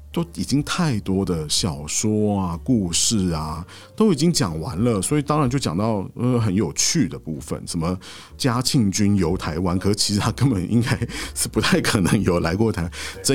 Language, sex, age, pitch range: Chinese, male, 50-69, 85-115 Hz